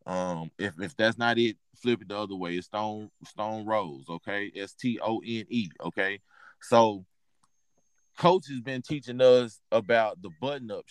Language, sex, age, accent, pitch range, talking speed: English, male, 20-39, American, 100-135 Hz, 170 wpm